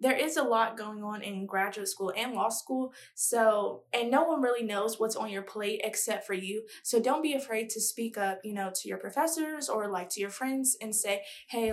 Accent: American